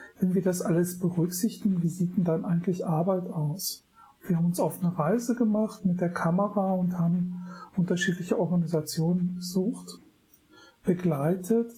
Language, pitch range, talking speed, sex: German, 170-195 Hz, 145 wpm, male